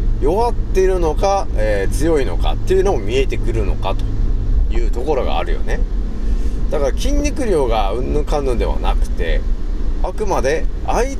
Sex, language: male, Japanese